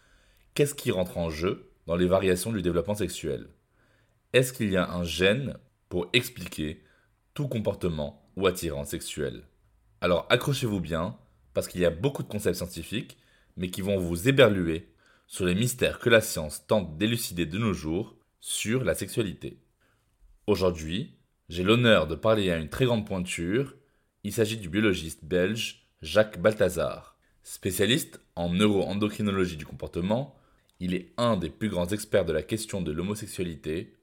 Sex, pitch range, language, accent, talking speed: male, 90-110 Hz, French, French, 155 wpm